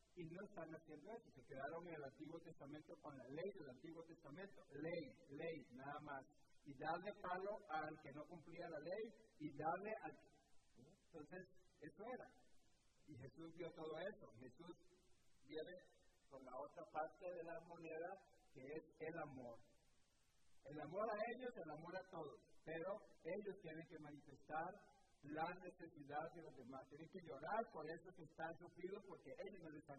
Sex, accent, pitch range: male, Mexican, 145-180 Hz